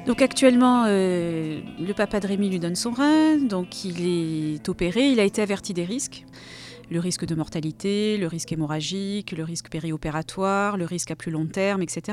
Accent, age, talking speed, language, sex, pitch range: French, 40-59, 190 wpm, French, female, 165-205 Hz